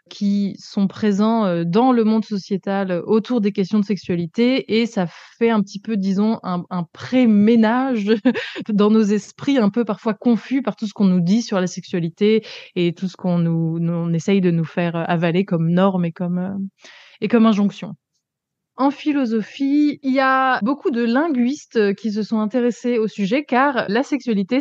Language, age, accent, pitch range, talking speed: French, 20-39, French, 190-240 Hz, 180 wpm